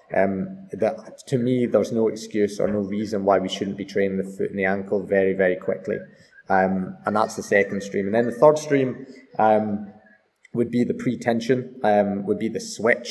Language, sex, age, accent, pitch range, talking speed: English, male, 20-39, British, 100-115 Hz, 200 wpm